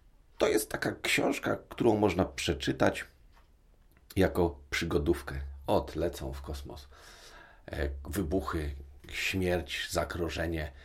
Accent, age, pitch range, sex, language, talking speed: native, 40-59, 75-90 Hz, male, Polish, 90 wpm